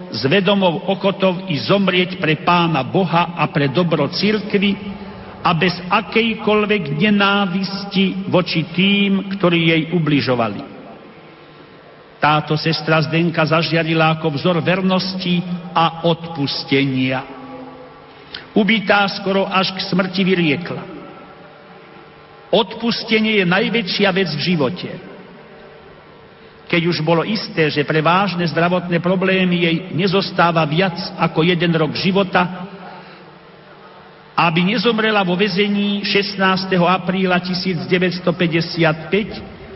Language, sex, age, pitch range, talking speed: Slovak, male, 50-69, 165-195 Hz, 95 wpm